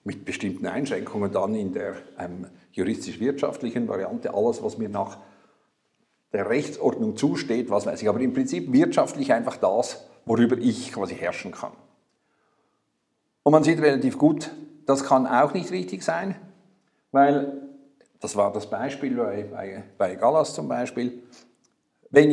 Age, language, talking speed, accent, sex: 60-79, German, 140 wpm, Austrian, male